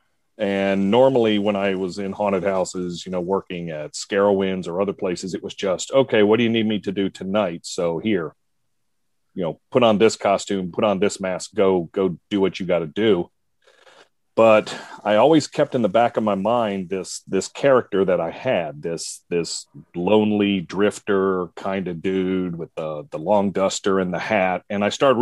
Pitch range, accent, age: 95-110 Hz, American, 40-59